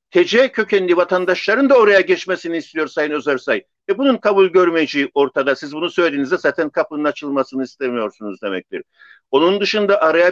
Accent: native